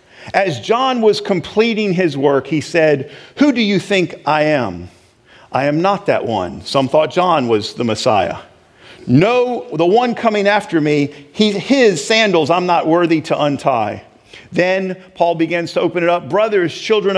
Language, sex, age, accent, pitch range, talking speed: English, male, 50-69, American, 165-220 Hz, 165 wpm